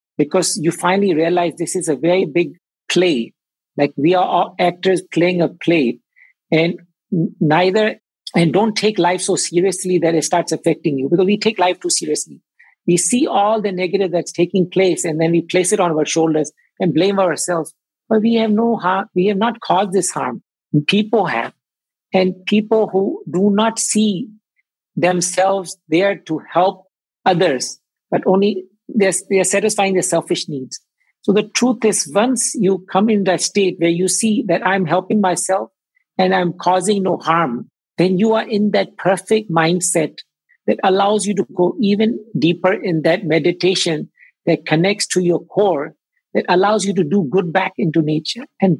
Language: English